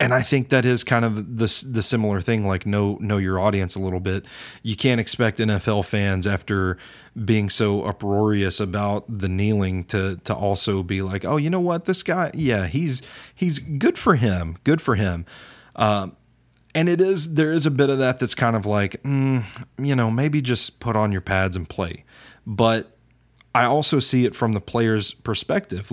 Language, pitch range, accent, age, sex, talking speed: English, 100-125 Hz, American, 30-49, male, 195 wpm